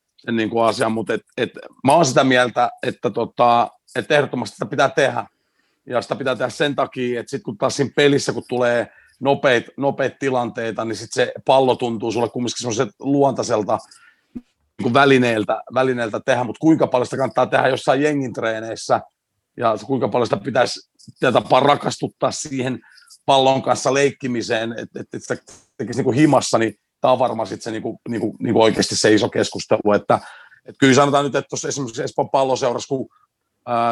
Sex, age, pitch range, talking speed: male, 40-59, 115-135 Hz, 170 wpm